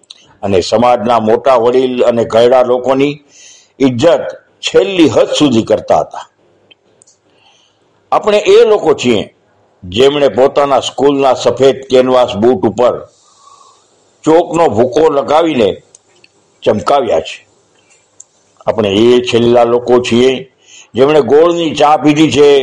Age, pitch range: 60-79, 125-170 Hz